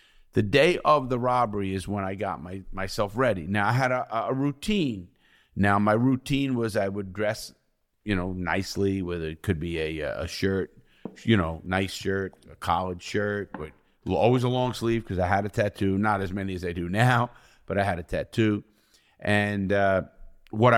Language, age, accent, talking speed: English, 50-69, American, 195 wpm